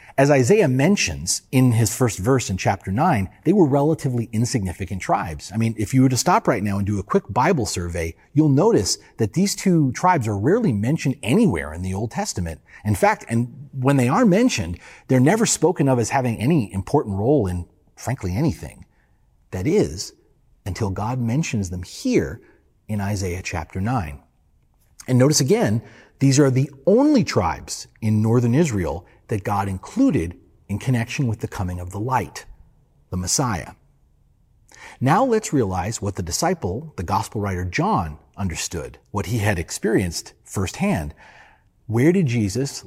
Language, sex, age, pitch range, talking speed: English, male, 40-59, 95-135 Hz, 165 wpm